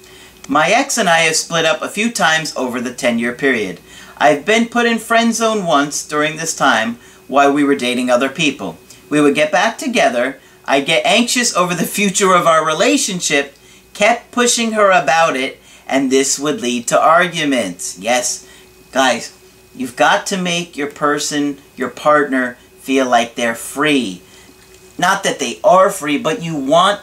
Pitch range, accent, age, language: 125-175 Hz, American, 40-59, English